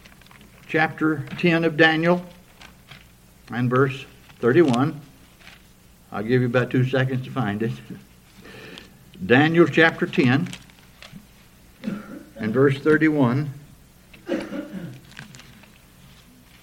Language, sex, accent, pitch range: English, male, American, 115-150 Hz